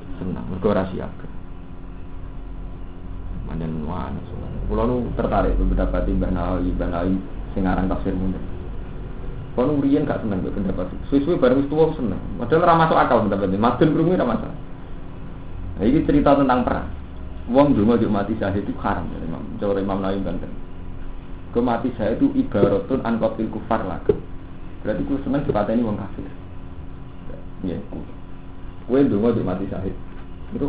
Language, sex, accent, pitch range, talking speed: Indonesian, male, native, 90-140 Hz, 35 wpm